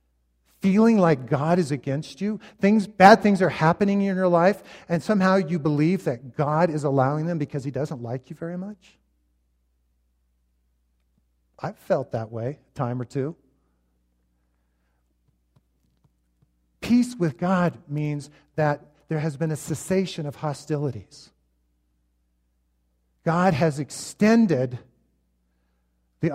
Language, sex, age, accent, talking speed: English, male, 50-69, American, 125 wpm